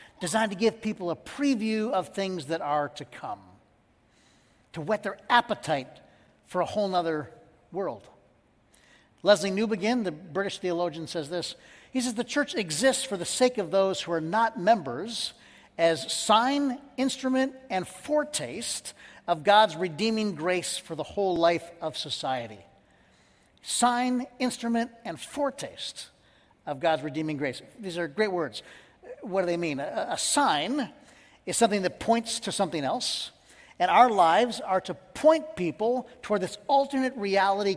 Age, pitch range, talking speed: 50-69, 170-240 Hz, 150 wpm